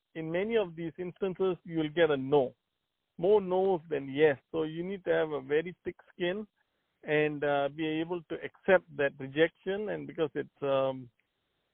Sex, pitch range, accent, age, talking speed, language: male, 150-185 Hz, Indian, 50-69, 185 wpm, English